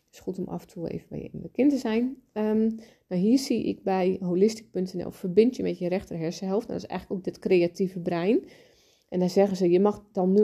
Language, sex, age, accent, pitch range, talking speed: Dutch, female, 30-49, Dutch, 180-220 Hz, 240 wpm